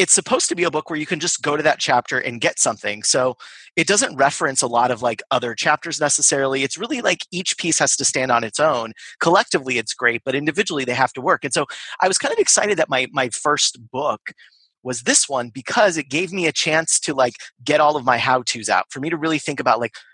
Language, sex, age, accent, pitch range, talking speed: English, male, 30-49, American, 125-160 Hz, 255 wpm